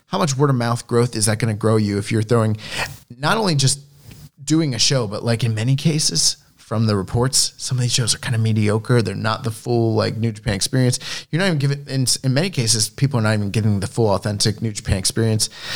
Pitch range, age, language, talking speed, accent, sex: 110-140 Hz, 20-39, English, 250 wpm, American, male